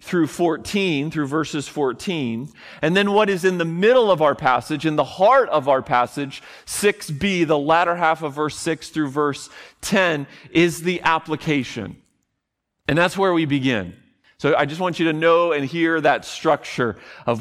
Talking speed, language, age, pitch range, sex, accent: 175 wpm, English, 40-59, 130-165 Hz, male, American